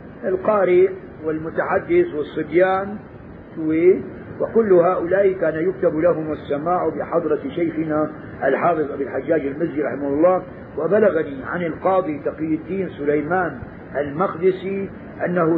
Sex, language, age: male, Arabic, 50-69